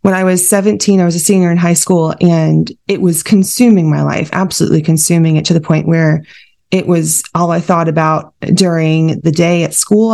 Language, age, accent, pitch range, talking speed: English, 20-39, American, 160-185 Hz, 205 wpm